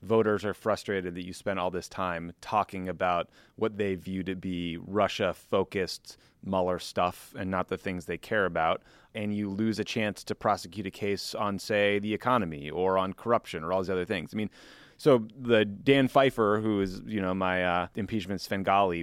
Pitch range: 95-110 Hz